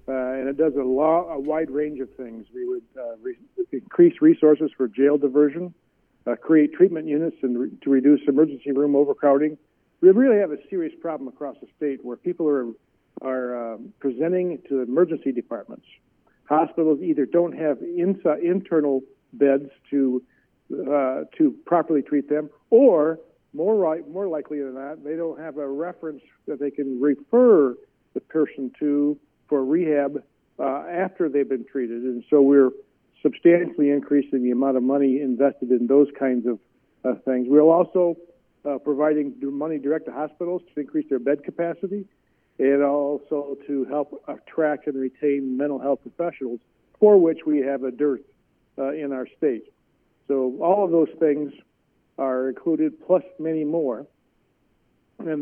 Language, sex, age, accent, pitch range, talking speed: English, male, 60-79, American, 135-160 Hz, 160 wpm